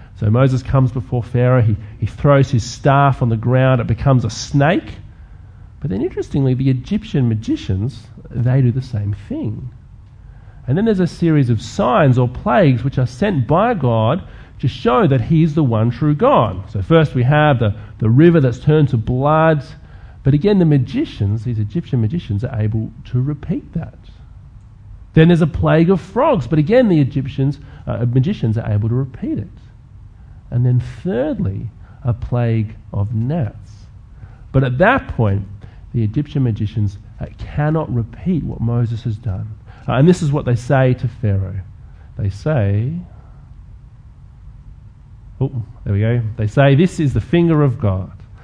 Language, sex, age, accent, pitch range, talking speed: English, male, 40-59, Australian, 105-140 Hz, 165 wpm